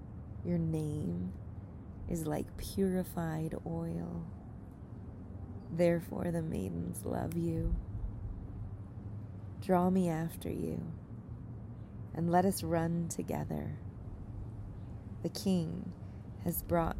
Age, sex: 20-39, female